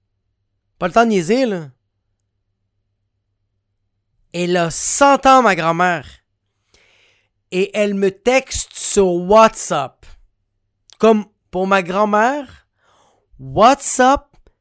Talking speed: 95 wpm